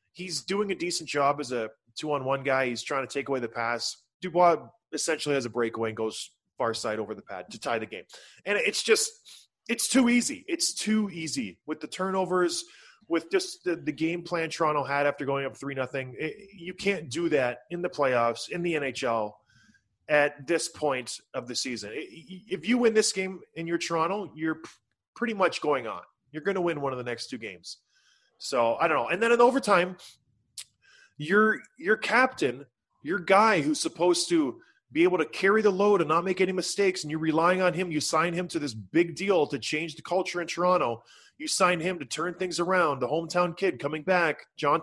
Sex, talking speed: male, 210 wpm